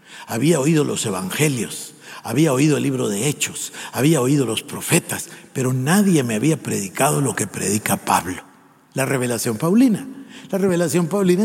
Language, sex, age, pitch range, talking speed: Spanish, male, 50-69, 155-230 Hz, 150 wpm